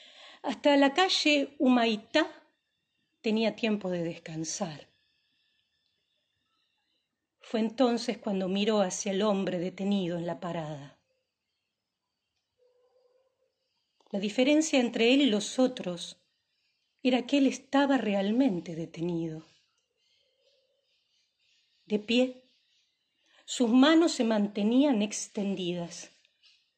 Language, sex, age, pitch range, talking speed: Spanish, female, 40-59, 195-280 Hz, 85 wpm